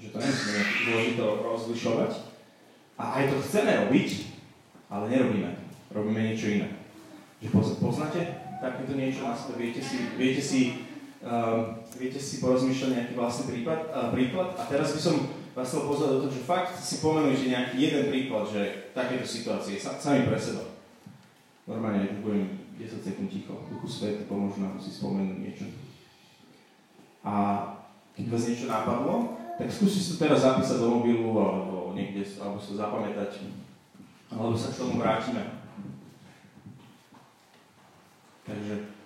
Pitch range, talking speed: 105-150 Hz, 135 wpm